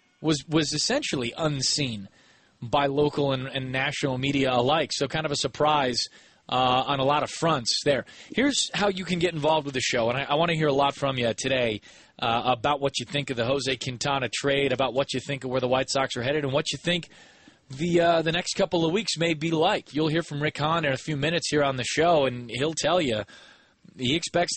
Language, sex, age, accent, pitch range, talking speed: English, male, 30-49, American, 130-155 Hz, 235 wpm